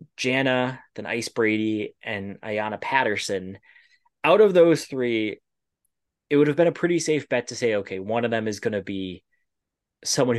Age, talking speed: 20-39, 175 wpm